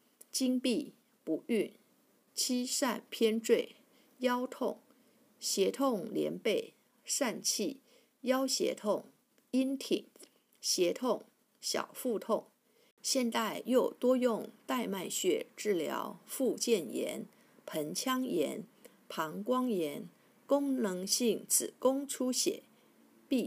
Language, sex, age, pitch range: Chinese, female, 50-69, 220-265 Hz